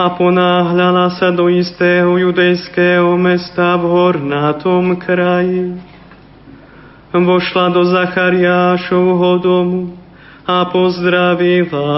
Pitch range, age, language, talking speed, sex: 175-180 Hz, 30-49, Slovak, 80 wpm, male